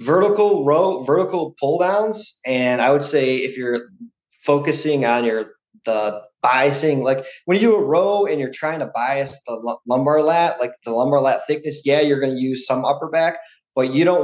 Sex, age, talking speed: male, 30-49, 200 wpm